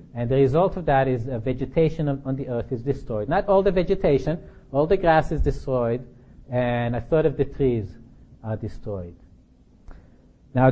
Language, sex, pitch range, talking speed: English, male, 120-155 Hz, 180 wpm